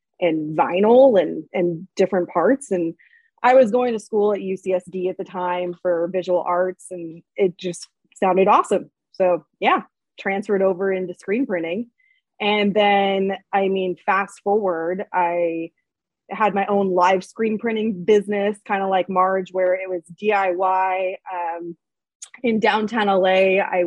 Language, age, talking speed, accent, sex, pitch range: English, 20-39, 150 wpm, American, female, 180-215 Hz